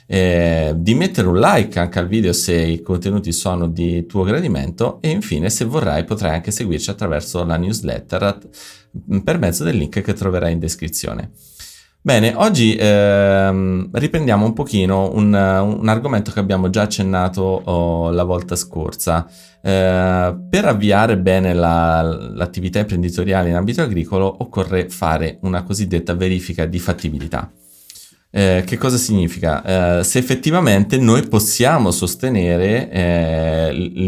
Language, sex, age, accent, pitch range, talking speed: Italian, male, 30-49, native, 85-105 Hz, 135 wpm